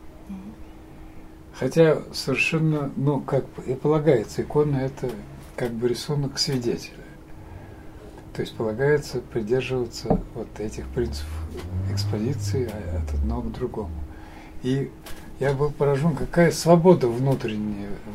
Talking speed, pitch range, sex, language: 105 wpm, 105-150 Hz, male, Russian